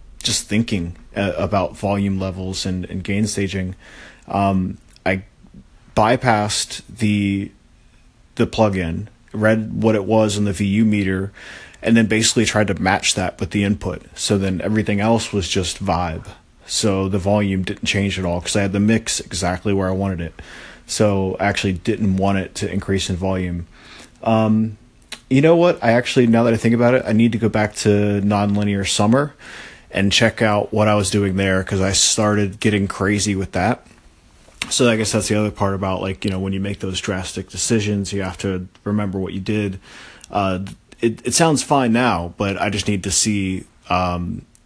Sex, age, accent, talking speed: male, 30-49, American, 185 wpm